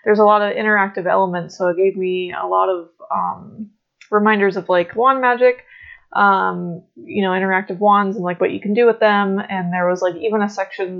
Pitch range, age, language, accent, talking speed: 180-210 Hz, 20-39, English, American, 215 wpm